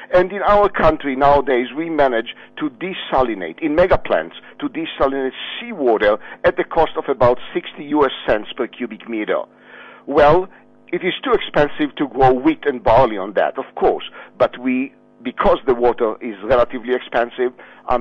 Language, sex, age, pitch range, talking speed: English, male, 50-69, 120-175 Hz, 165 wpm